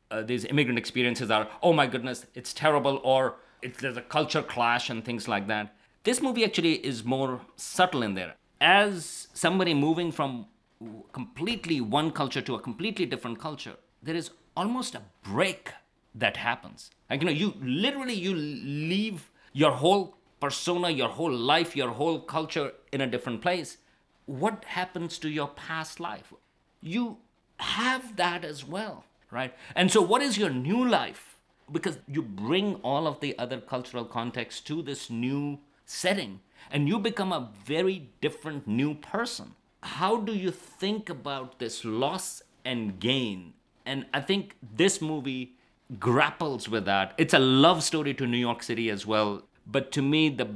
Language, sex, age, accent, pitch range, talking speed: English, male, 50-69, Indian, 120-175 Hz, 165 wpm